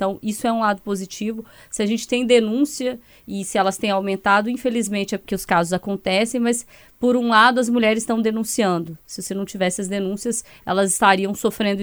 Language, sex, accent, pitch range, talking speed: Portuguese, female, Brazilian, 200-245 Hz, 200 wpm